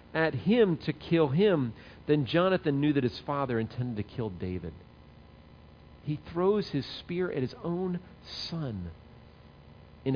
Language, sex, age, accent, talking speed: English, male, 50-69, American, 140 wpm